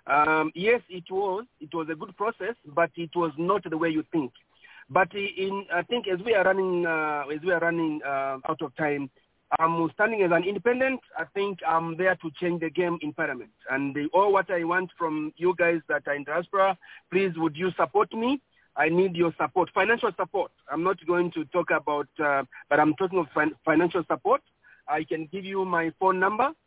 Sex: male